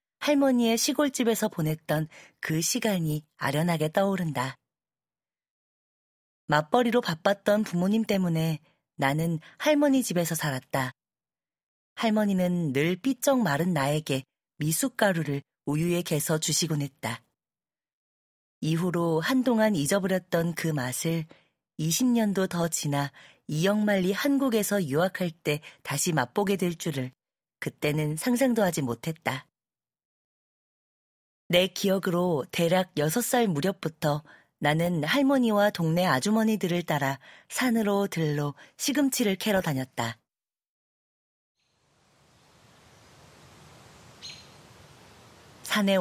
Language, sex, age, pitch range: Korean, female, 40-59, 150-210 Hz